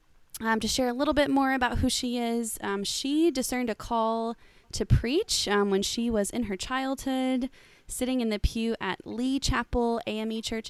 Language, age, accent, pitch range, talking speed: English, 20-39, American, 200-240 Hz, 190 wpm